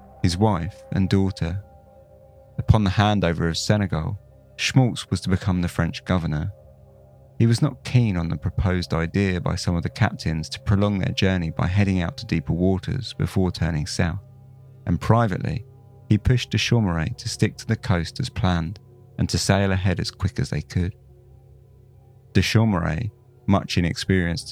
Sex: male